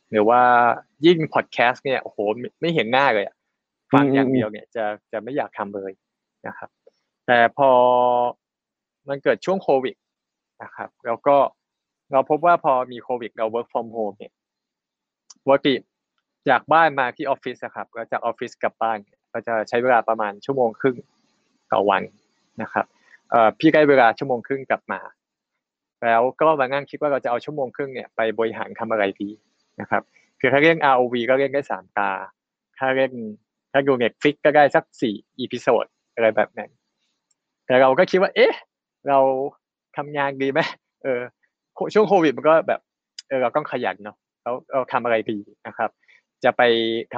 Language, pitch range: Thai, 115-140 Hz